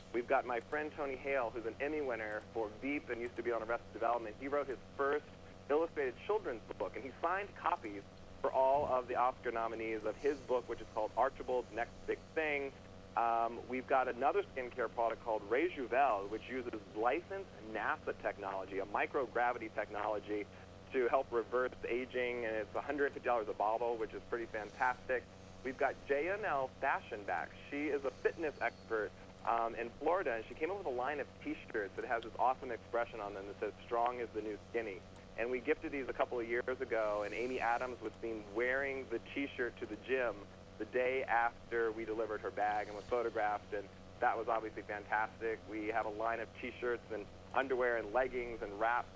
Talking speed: 190 wpm